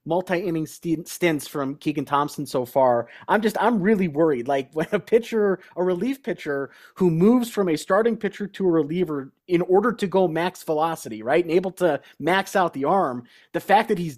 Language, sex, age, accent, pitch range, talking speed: English, male, 30-49, American, 145-200 Hz, 195 wpm